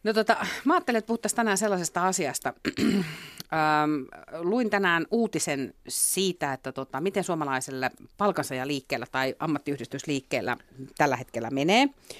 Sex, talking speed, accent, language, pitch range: female, 120 wpm, native, Finnish, 135-185 Hz